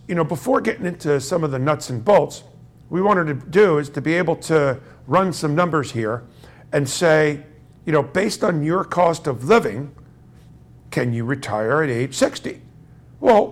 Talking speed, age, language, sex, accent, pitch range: 180 wpm, 50-69, English, male, American, 135-185 Hz